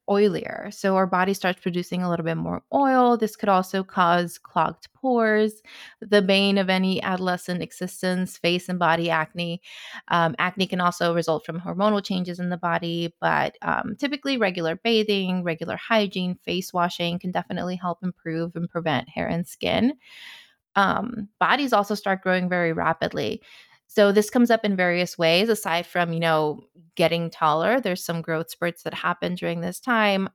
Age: 20-39